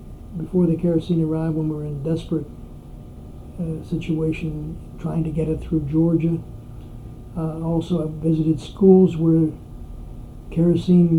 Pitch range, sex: 155-170 Hz, male